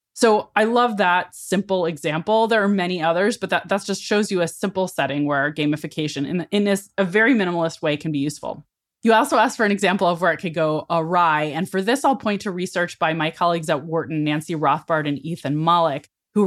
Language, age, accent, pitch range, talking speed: English, 20-39, American, 165-205 Hz, 220 wpm